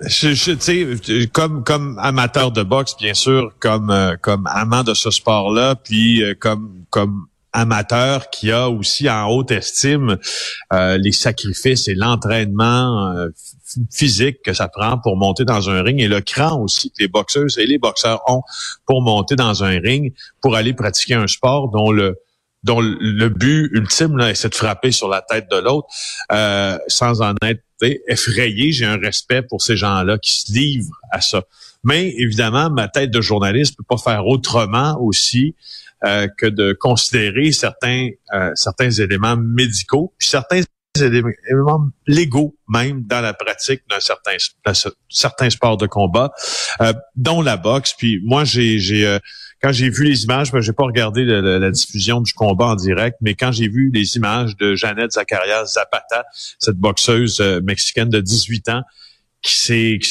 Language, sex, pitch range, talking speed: French, male, 105-130 Hz, 175 wpm